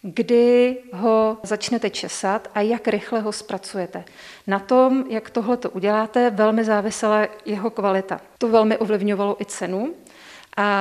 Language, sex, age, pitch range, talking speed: Czech, female, 40-59, 200-225 Hz, 140 wpm